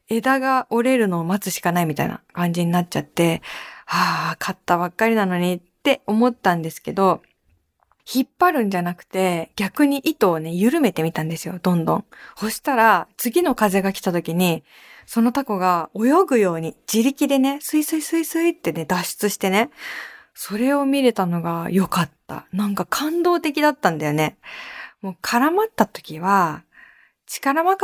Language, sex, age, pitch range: Japanese, female, 20-39, 175-270 Hz